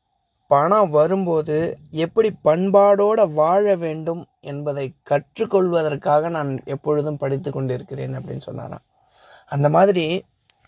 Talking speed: 85 wpm